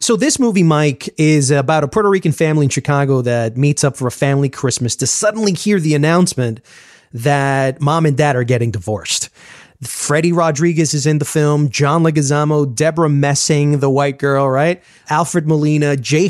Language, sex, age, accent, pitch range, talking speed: English, male, 30-49, American, 140-195 Hz, 175 wpm